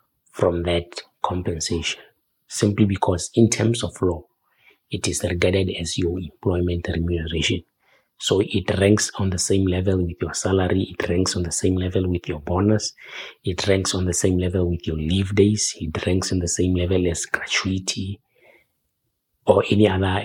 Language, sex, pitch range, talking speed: English, male, 85-100 Hz, 165 wpm